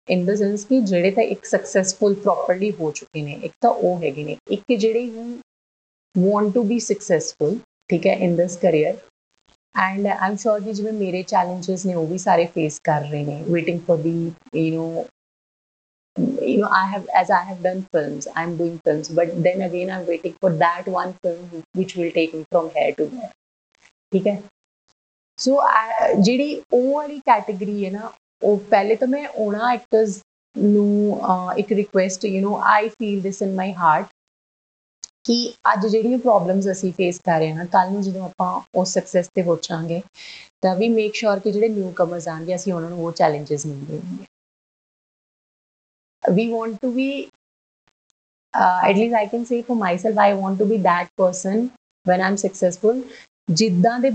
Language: Punjabi